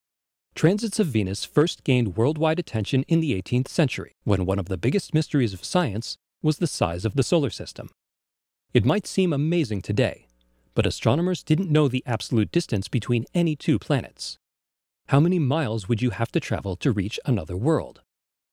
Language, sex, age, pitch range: English, male, 40-59, 100-155 Hz